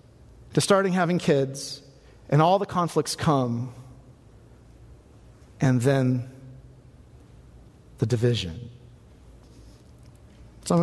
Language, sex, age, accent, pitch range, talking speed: English, male, 40-59, American, 130-185 Hz, 80 wpm